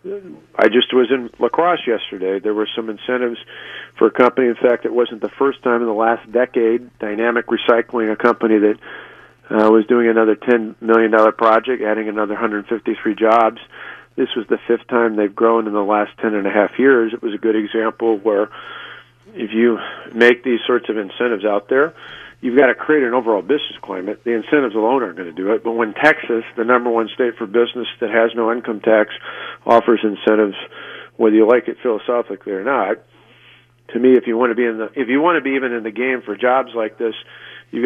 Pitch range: 110-125 Hz